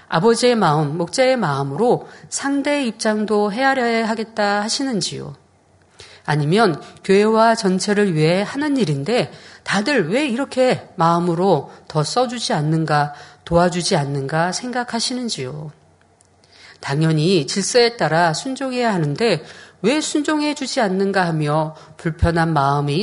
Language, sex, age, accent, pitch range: Korean, female, 40-59, native, 160-235 Hz